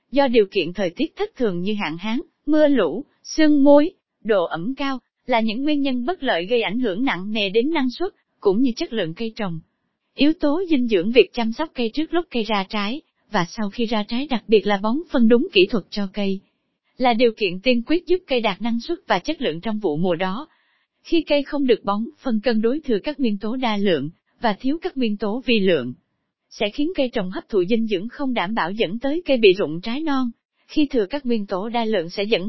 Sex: female